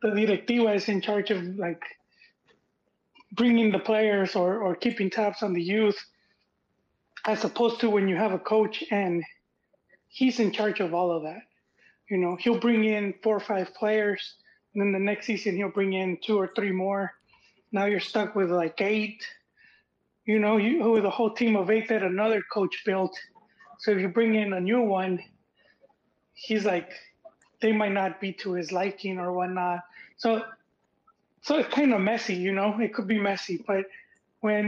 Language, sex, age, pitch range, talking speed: English, male, 20-39, 195-225 Hz, 180 wpm